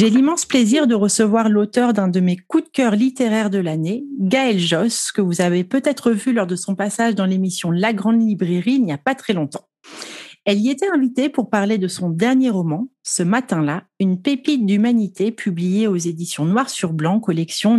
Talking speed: 200 wpm